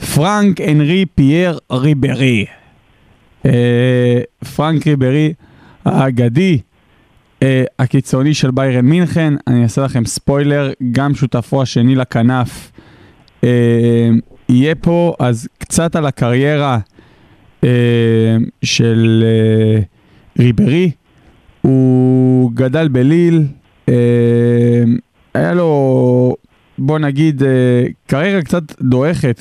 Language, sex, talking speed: Hebrew, male, 90 wpm